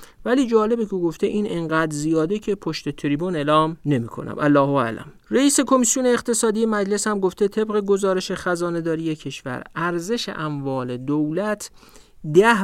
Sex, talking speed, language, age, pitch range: male, 140 wpm, Persian, 50-69, 135-190 Hz